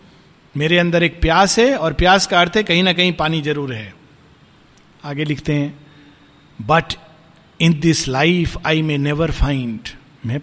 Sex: male